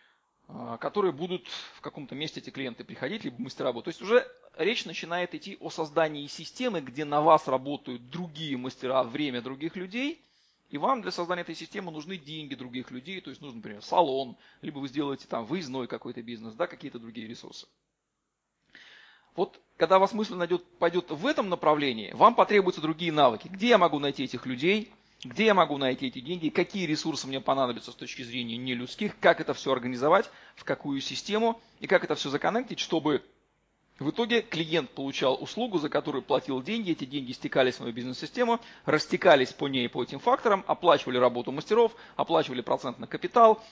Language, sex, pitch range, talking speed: Russian, male, 135-185 Hz, 180 wpm